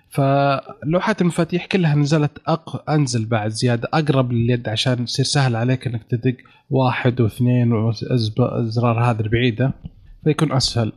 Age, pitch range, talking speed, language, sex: 30-49, 120-145 Hz, 125 wpm, Arabic, male